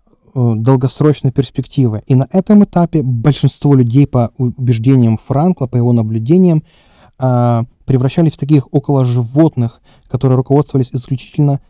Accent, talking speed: native, 115 wpm